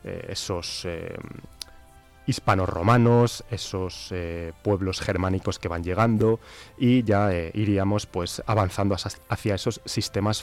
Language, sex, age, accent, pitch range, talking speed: Spanish, male, 20-39, Spanish, 90-115 Hz, 105 wpm